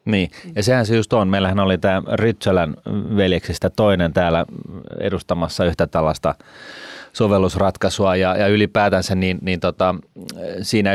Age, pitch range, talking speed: 30-49, 90-105 Hz, 130 wpm